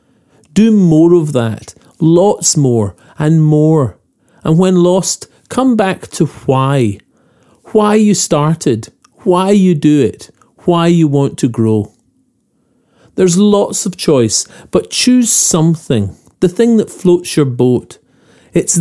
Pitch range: 120-180 Hz